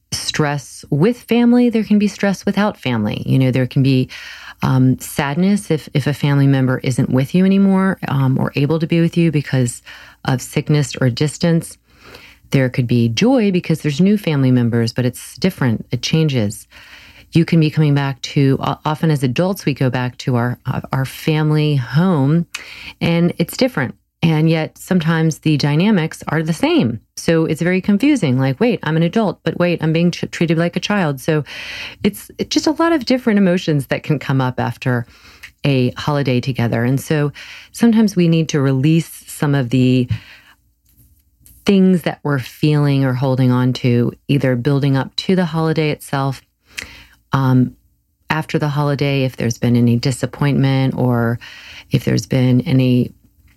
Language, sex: English, female